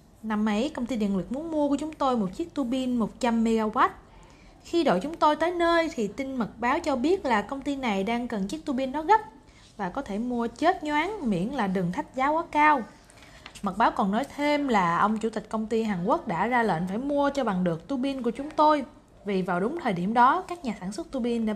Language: Vietnamese